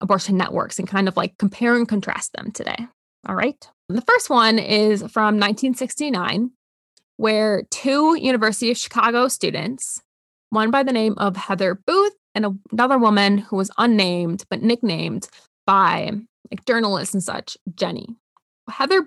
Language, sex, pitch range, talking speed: English, female, 195-235 Hz, 150 wpm